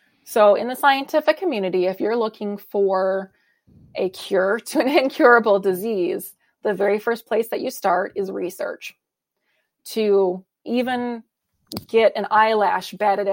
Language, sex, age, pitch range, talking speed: English, female, 20-39, 195-230 Hz, 135 wpm